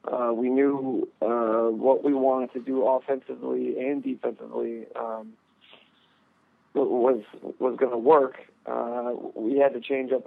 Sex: male